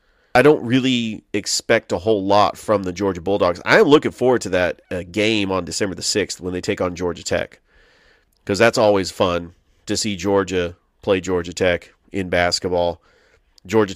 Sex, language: male, English